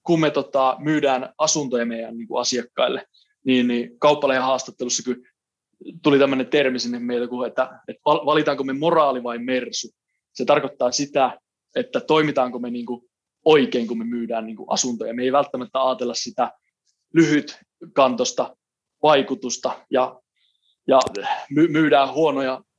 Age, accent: 20-39, native